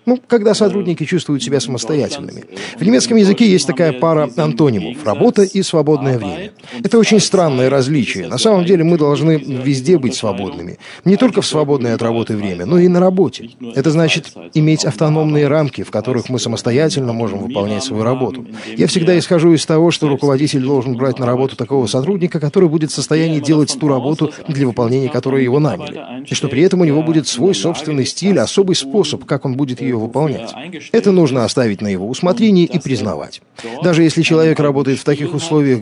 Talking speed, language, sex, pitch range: 185 wpm, Russian, male, 125-165 Hz